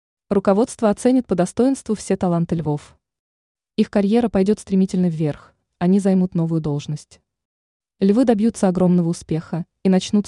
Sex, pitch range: female, 170-215 Hz